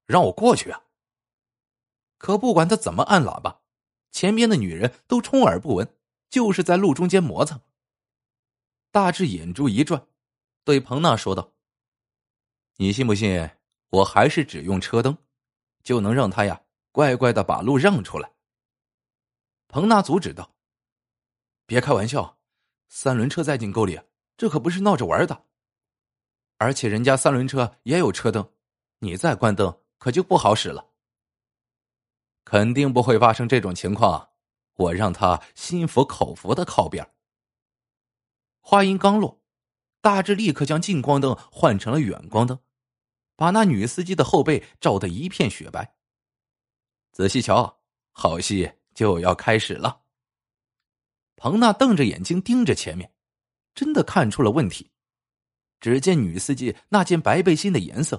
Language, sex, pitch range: Chinese, male, 115-165 Hz